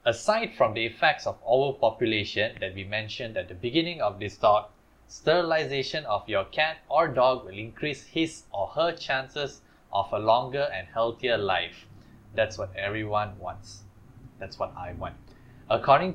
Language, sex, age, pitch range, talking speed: English, male, 10-29, 110-150 Hz, 155 wpm